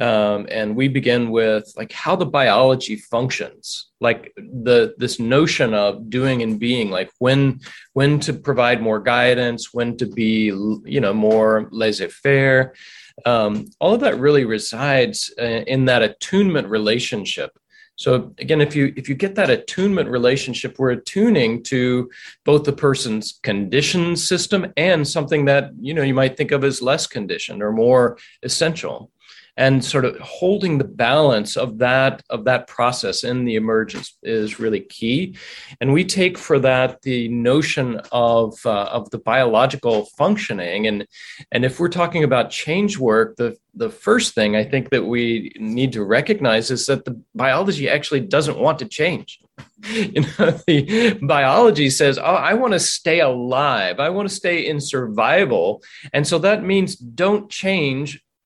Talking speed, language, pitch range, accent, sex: 160 wpm, English, 120-170 Hz, American, male